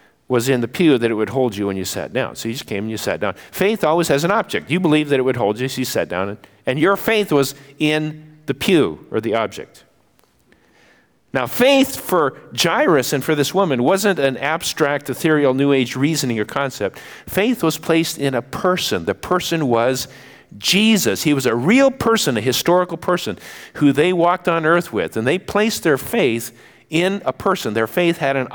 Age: 50-69